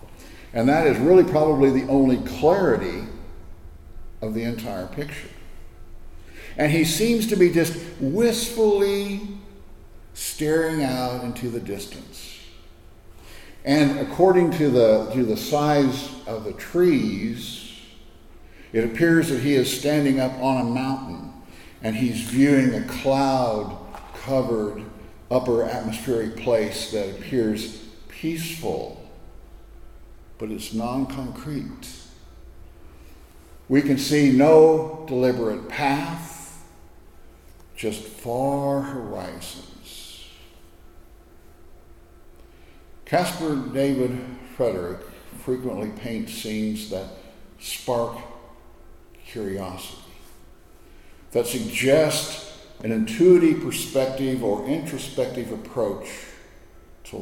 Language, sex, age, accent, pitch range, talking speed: English, male, 60-79, American, 85-135 Hz, 90 wpm